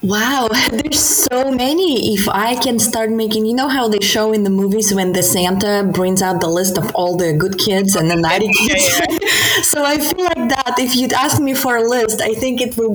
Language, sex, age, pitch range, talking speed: English, female, 20-39, 180-235 Hz, 225 wpm